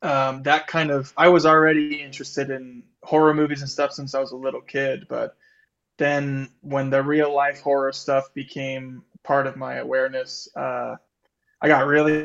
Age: 20-39